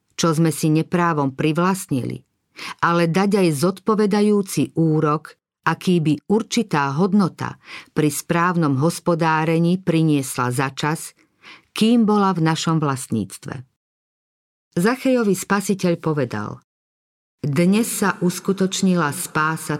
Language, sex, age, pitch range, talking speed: Slovak, female, 50-69, 150-185 Hz, 95 wpm